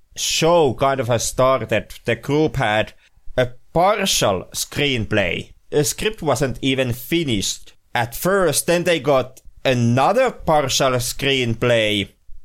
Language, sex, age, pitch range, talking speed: English, male, 30-49, 115-150 Hz, 115 wpm